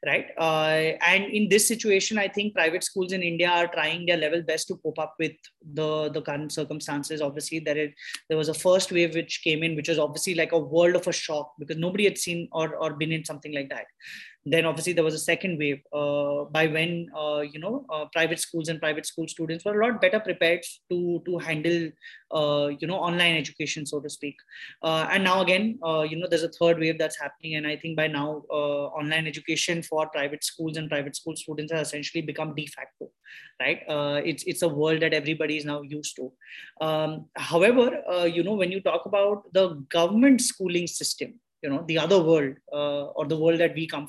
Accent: Indian